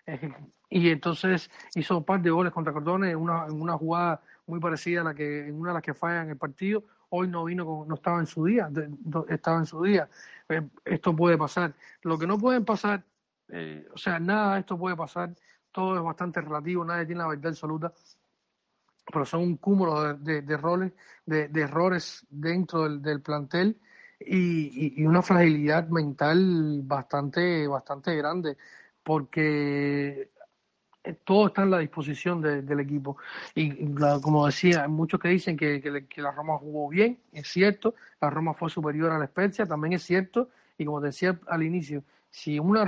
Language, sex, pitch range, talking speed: Spanish, male, 150-180 Hz, 190 wpm